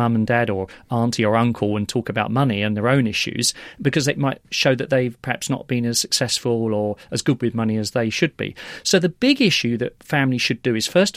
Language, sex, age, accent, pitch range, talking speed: English, male, 40-59, British, 120-150 Hz, 240 wpm